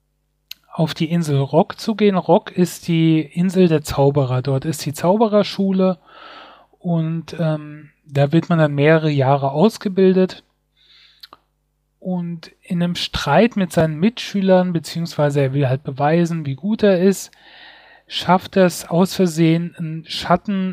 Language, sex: German, male